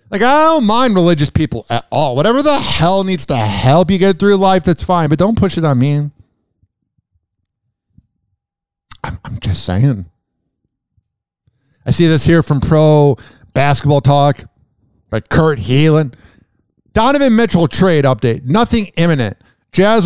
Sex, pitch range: male, 125-180 Hz